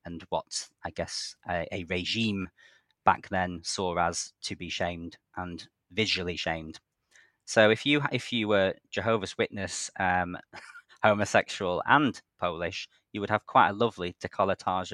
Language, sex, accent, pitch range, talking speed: English, male, British, 90-100 Hz, 145 wpm